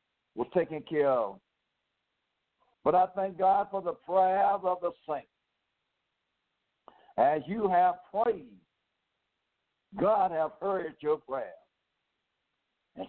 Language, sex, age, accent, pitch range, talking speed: English, male, 60-79, American, 155-190 Hz, 110 wpm